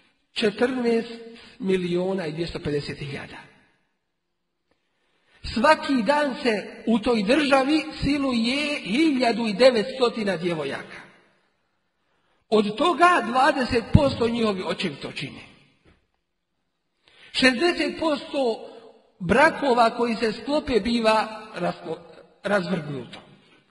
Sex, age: male, 50-69